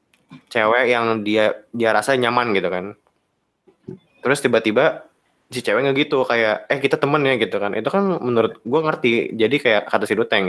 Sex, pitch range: male, 105-125 Hz